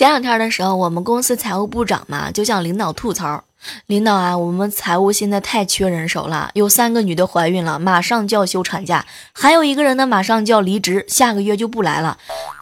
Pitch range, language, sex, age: 195-280 Hz, Chinese, female, 20-39